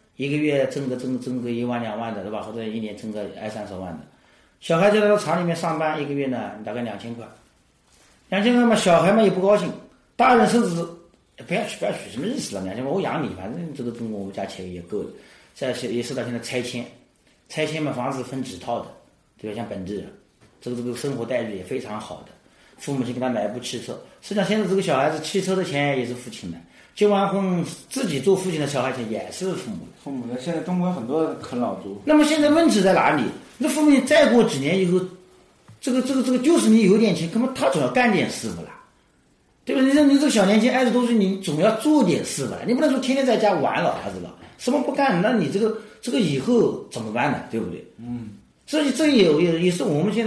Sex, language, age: male, Chinese, 40-59